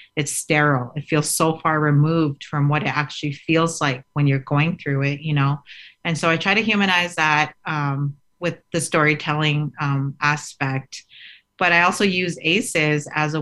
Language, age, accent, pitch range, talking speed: English, 30-49, American, 140-160 Hz, 180 wpm